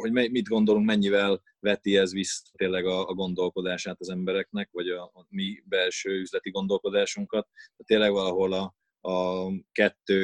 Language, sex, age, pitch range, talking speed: Hungarian, male, 20-39, 95-120 Hz, 140 wpm